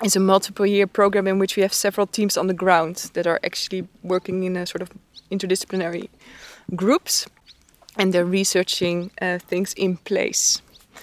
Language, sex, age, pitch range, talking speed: English, female, 20-39, 180-205 Hz, 165 wpm